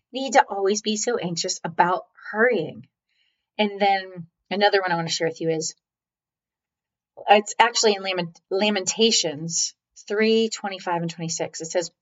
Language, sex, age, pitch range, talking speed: English, female, 30-49, 180-225 Hz, 150 wpm